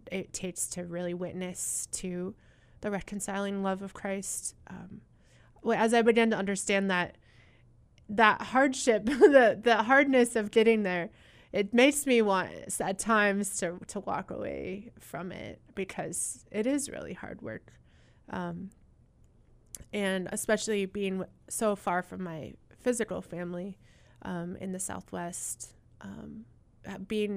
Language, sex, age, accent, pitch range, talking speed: English, female, 20-39, American, 180-230 Hz, 130 wpm